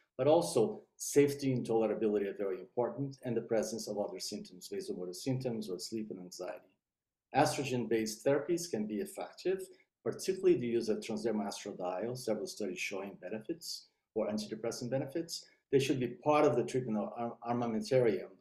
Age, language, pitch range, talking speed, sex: 50-69, English, 110-145 Hz, 150 wpm, male